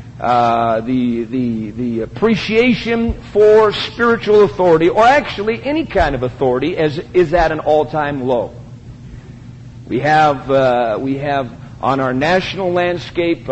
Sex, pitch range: male, 130-175 Hz